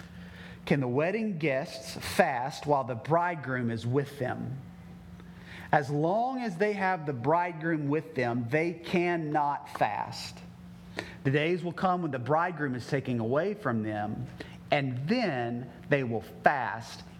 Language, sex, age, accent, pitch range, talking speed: English, male, 40-59, American, 115-175 Hz, 140 wpm